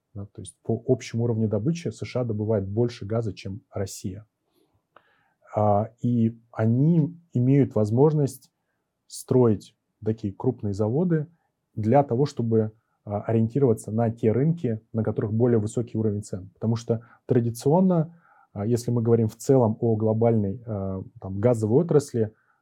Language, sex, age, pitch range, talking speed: Russian, male, 20-39, 110-130 Hz, 120 wpm